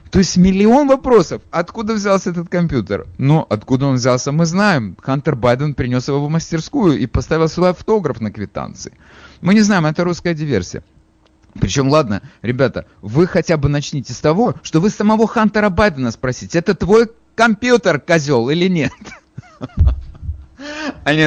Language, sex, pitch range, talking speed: Russian, male, 105-165 Hz, 150 wpm